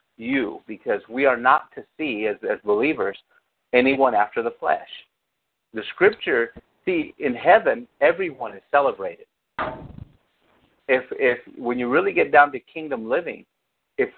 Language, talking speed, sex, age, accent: English, 140 wpm, male, 50-69, American